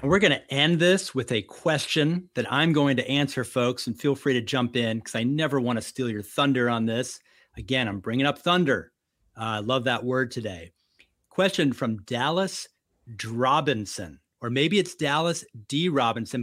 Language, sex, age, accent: English, male, 40-59, American